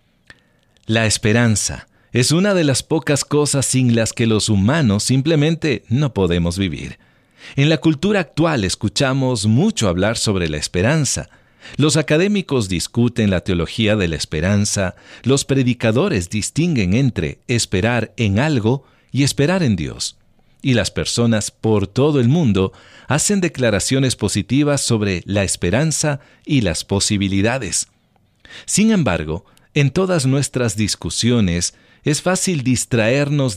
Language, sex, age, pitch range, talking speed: English, male, 50-69, 100-145 Hz, 125 wpm